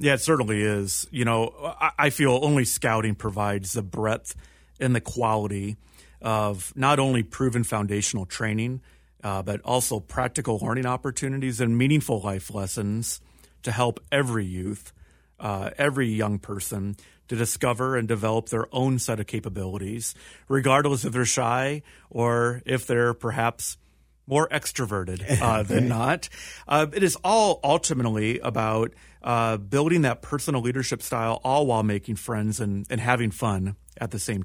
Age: 40-59